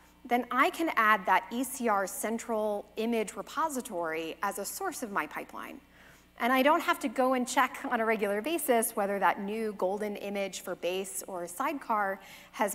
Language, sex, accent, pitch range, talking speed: English, female, American, 195-265 Hz, 175 wpm